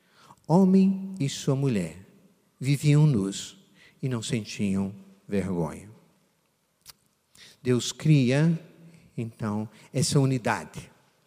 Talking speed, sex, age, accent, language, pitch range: 80 wpm, male, 50-69, Brazilian, Portuguese, 125-185 Hz